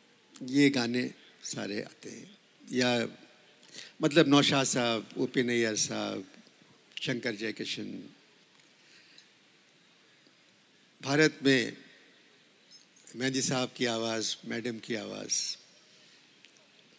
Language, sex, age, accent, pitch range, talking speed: Hindi, male, 60-79, native, 125-155 Hz, 85 wpm